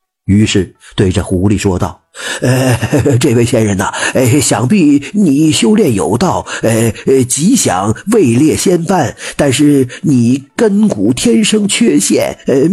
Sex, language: male, Chinese